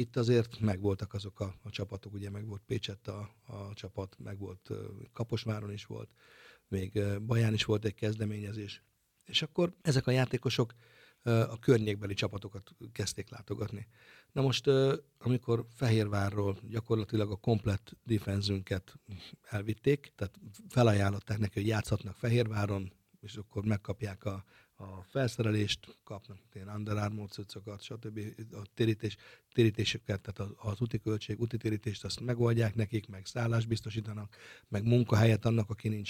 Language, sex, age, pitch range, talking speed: Hungarian, male, 60-79, 100-120 Hz, 130 wpm